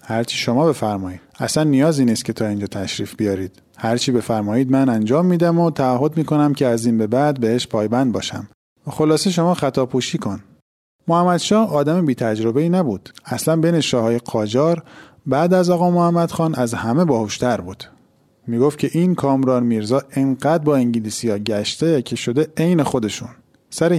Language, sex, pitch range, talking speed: Persian, male, 120-170 Hz, 155 wpm